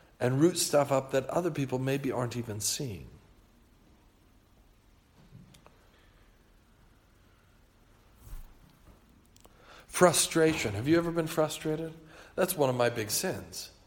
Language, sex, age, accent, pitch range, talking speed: English, male, 50-69, American, 110-165 Hz, 100 wpm